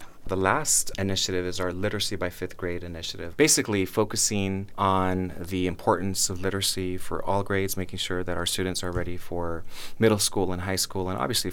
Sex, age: male, 30-49